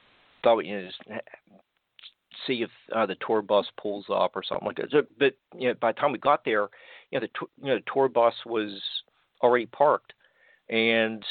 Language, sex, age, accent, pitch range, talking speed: English, male, 50-69, American, 100-115 Hz, 210 wpm